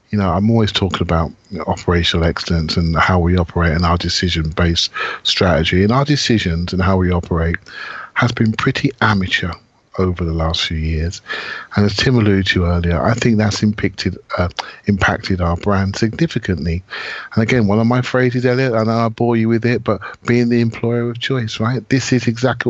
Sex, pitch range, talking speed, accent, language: male, 95-125 Hz, 190 wpm, British, English